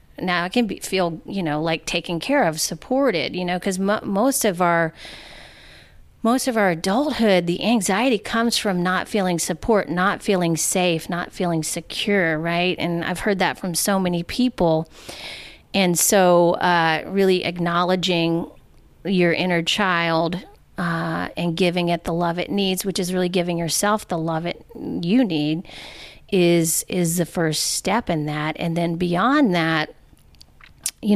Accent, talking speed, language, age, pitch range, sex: American, 160 wpm, English, 40-59, 170-200 Hz, female